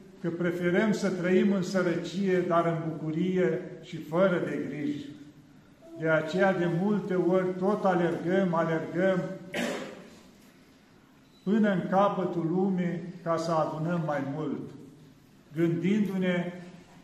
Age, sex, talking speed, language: 50-69, male, 110 wpm, Romanian